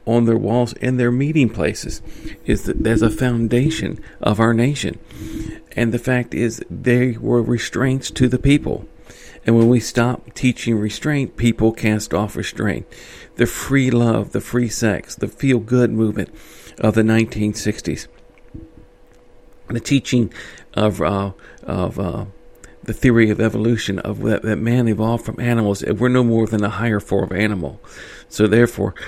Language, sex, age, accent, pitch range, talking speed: English, male, 50-69, American, 105-120 Hz, 155 wpm